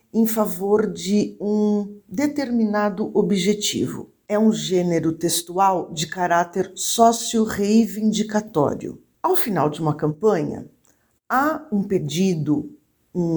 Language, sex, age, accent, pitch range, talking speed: English, female, 50-69, Brazilian, 180-230 Hz, 100 wpm